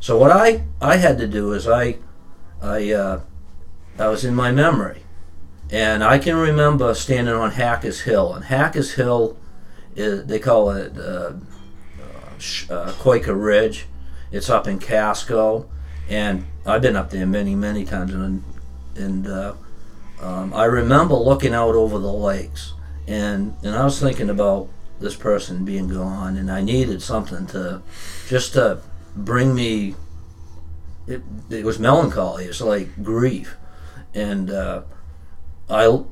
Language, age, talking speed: English, 50-69, 145 wpm